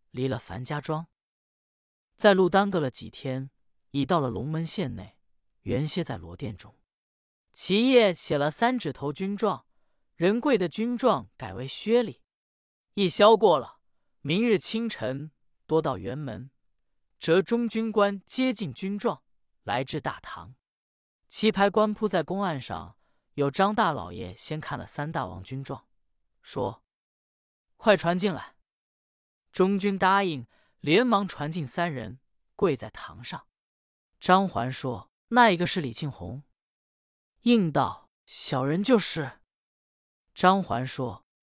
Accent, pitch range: native, 130-200 Hz